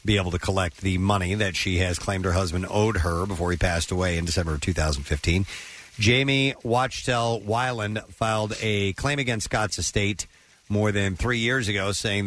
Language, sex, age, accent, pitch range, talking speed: English, male, 50-69, American, 90-115 Hz, 180 wpm